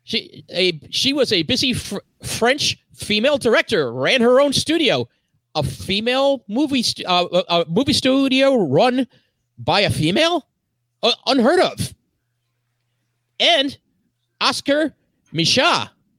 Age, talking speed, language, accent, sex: 40-59, 120 wpm, English, American, male